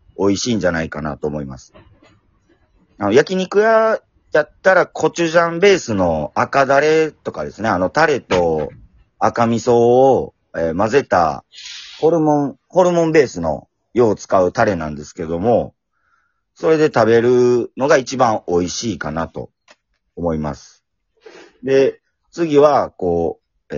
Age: 40-59